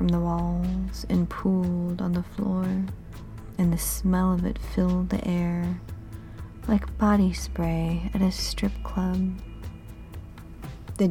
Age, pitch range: 40-59, 160-185 Hz